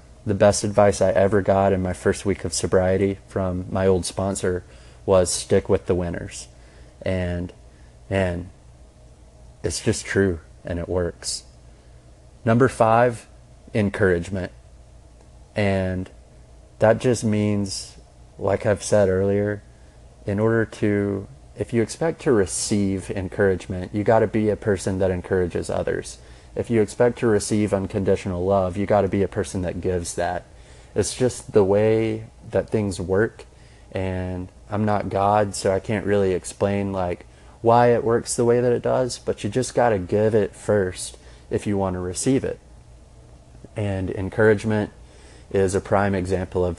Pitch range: 85-105 Hz